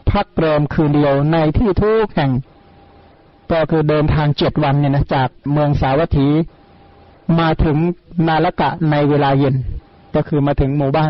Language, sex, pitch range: Thai, male, 145-170 Hz